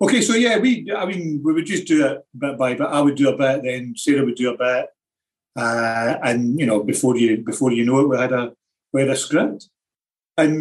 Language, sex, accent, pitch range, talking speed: English, male, British, 115-155 Hz, 245 wpm